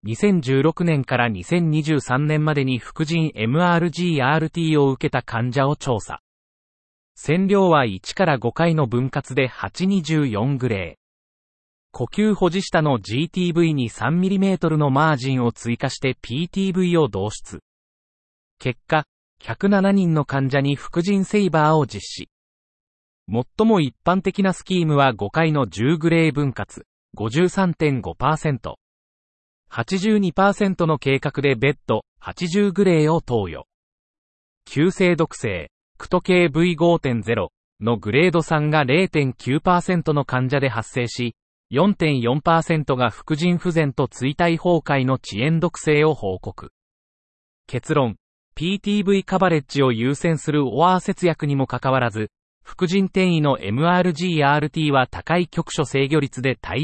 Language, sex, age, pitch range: Japanese, male, 40-59, 125-175 Hz